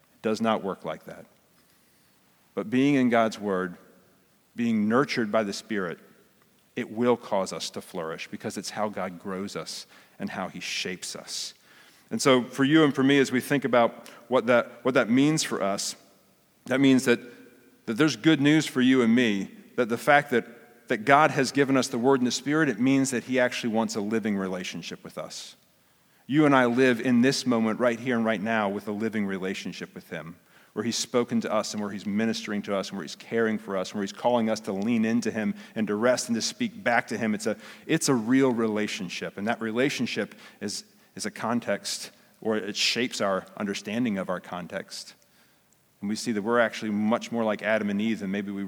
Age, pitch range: 40-59, 105-130 Hz